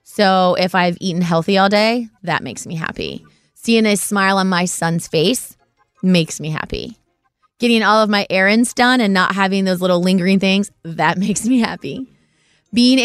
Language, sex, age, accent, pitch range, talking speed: English, female, 20-39, American, 180-220 Hz, 180 wpm